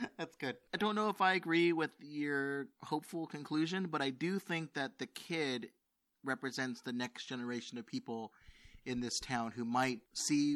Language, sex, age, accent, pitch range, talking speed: English, male, 30-49, American, 120-165 Hz, 175 wpm